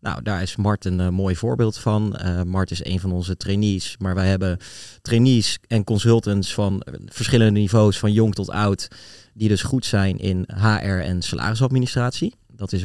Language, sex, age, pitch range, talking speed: Dutch, male, 30-49, 95-115 Hz, 180 wpm